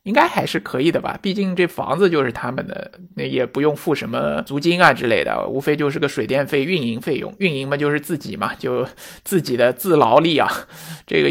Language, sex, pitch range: Chinese, male, 140-175 Hz